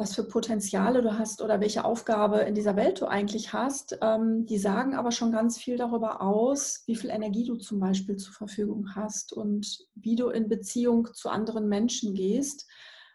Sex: female